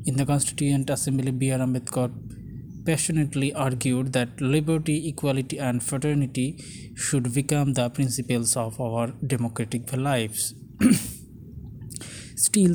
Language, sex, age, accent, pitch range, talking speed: Bengali, male, 20-39, native, 130-155 Hz, 105 wpm